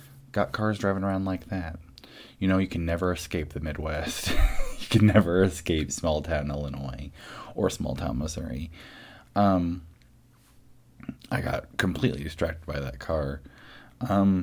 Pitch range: 75-115 Hz